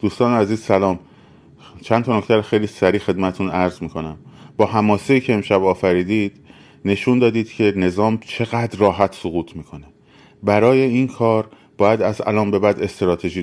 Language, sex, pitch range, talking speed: Persian, male, 95-115 Hz, 145 wpm